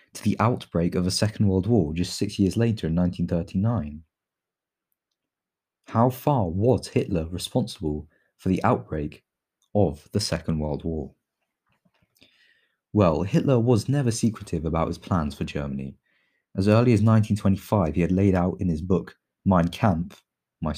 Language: English